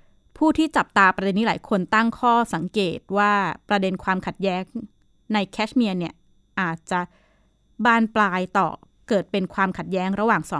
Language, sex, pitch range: Thai, female, 180-220 Hz